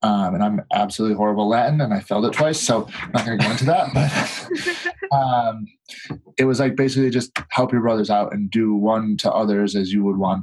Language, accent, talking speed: English, American, 225 wpm